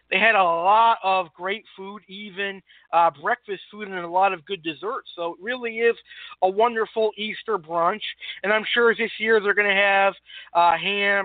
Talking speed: 185 wpm